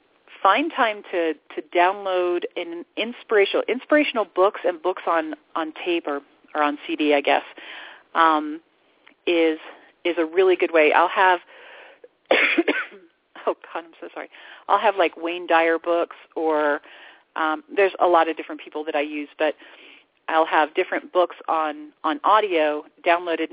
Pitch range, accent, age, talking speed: 155-205 Hz, American, 40-59, 155 wpm